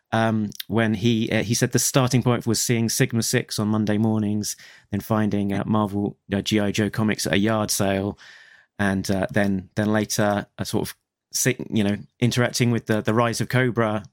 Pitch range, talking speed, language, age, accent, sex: 105-125 Hz, 190 wpm, English, 30-49, British, male